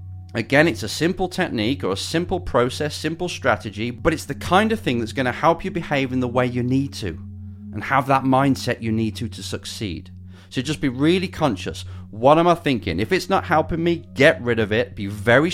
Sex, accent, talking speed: male, British, 220 wpm